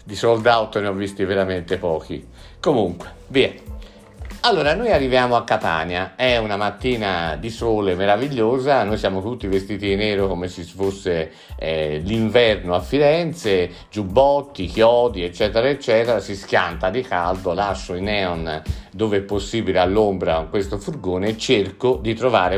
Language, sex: Italian, male